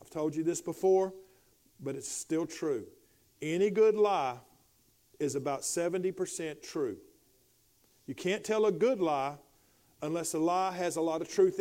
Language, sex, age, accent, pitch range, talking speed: English, male, 50-69, American, 165-220 Hz, 150 wpm